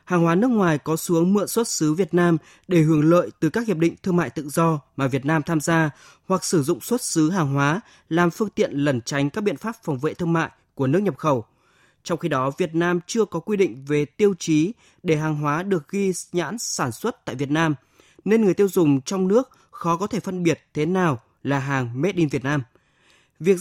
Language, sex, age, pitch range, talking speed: Vietnamese, male, 20-39, 150-190 Hz, 235 wpm